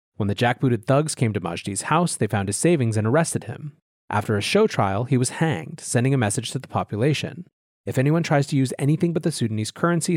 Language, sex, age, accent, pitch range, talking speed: English, male, 30-49, American, 110-155 Hz, 225 wpm